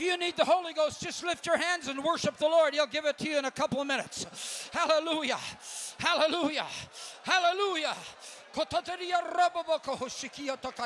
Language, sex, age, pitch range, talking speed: English, male, 50-69, 255-335 Hz, 150 wpm